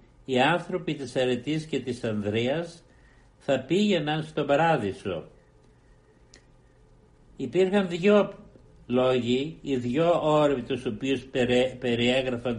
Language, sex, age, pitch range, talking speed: Greek, male, 60-79, 120-155 Hz, 95 wpm